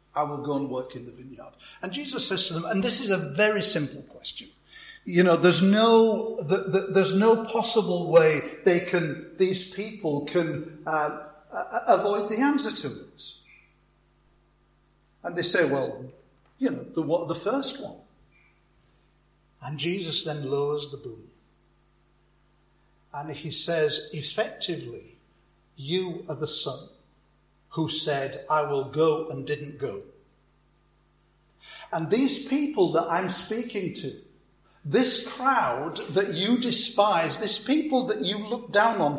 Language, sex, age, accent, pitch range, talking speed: English, male, 60-79, British, 150-220 Hz, 140 wpm